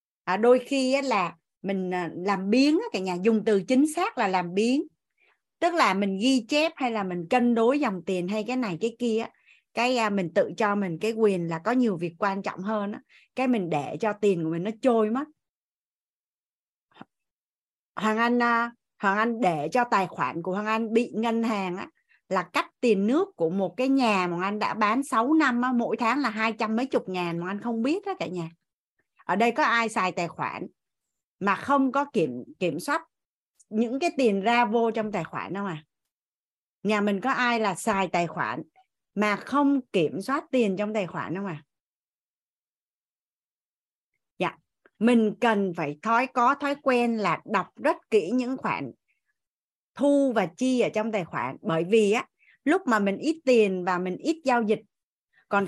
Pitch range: 195-250 Hz